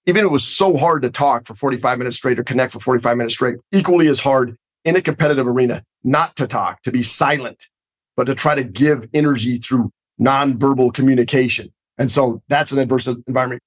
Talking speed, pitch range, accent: 200 wpm, 120-140 Hz, American